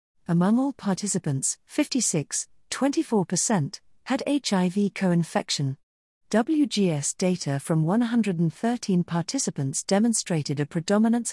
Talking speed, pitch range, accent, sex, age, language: 85 wpm, 155-210 Hz, British, female, 50-69, English